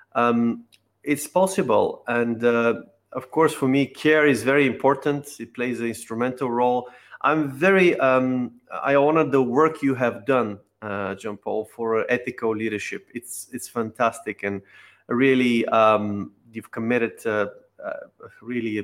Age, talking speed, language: 30-49, 145 wpm, English